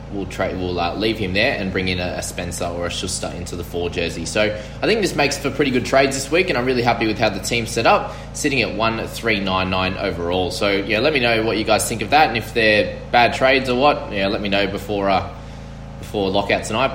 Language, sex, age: English, male, 20-39